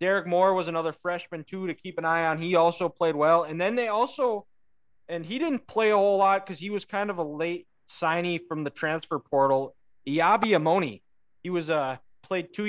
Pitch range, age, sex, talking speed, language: 155-195 Hz, 20-39, male, 220 wpm, English